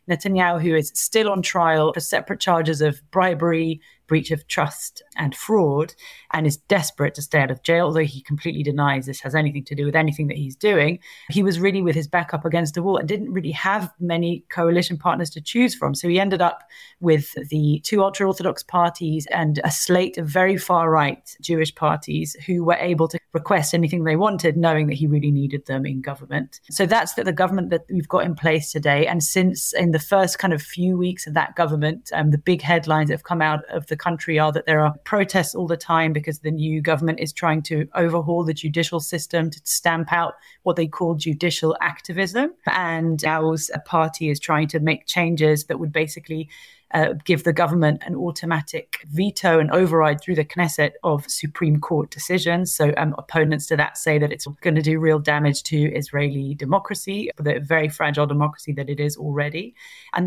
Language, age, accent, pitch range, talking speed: English, 30-49, British, 150-175 Hz, 205 wpm